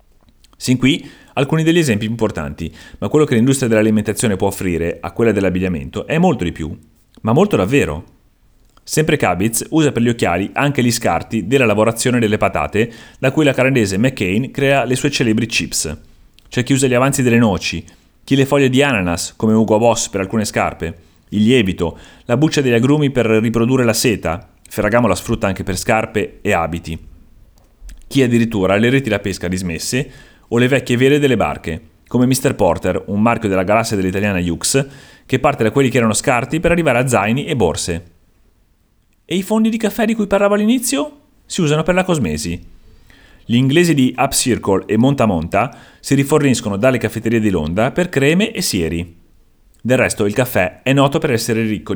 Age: 30-49